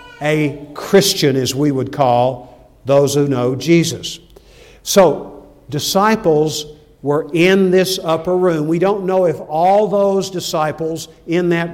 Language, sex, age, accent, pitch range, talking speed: English, male, 50-69, American, 145-180 Hz, 135 wpm